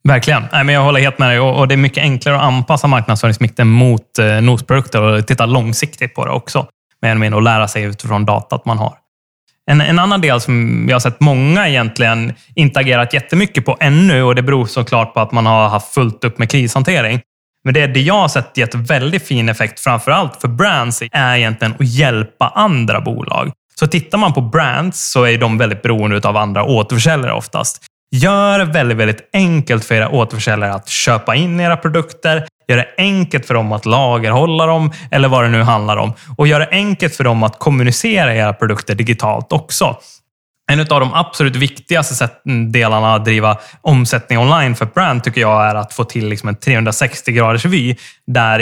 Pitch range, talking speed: 115-145 Hz, 185 wpm